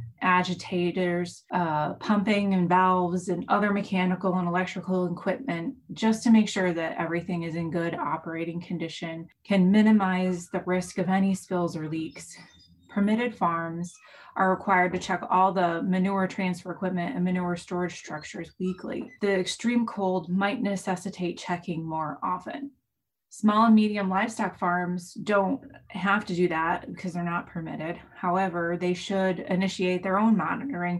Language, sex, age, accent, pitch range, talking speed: English, female, 20-39, American, 175-200 Hz, 145 wpm